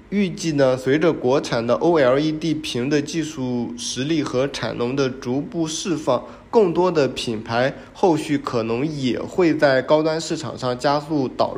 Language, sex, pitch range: Chinese, male, 120-160 Hz